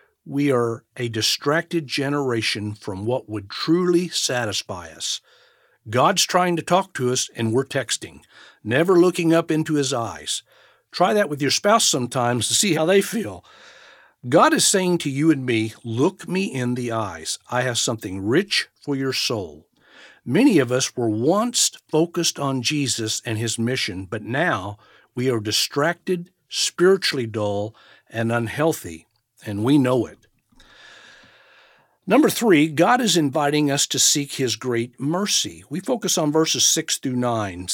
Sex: male